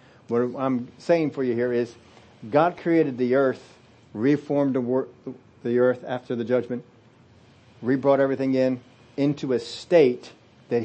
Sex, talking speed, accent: male, 135 wpm, American